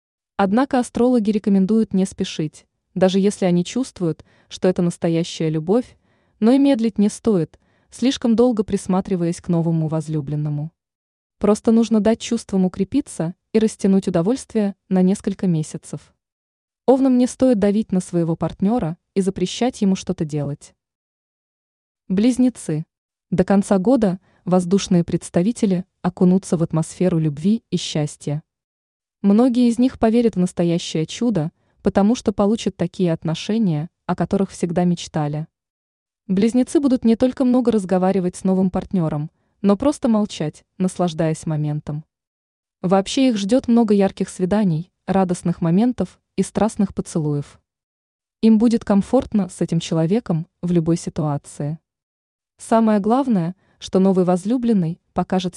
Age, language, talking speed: 20-39, Russian, 125 wpm